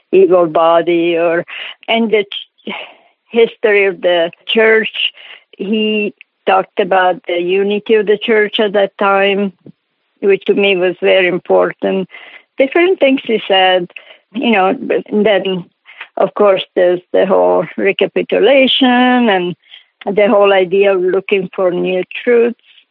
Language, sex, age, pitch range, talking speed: English, female, 60-79, 180-220 Hz, 130 wpm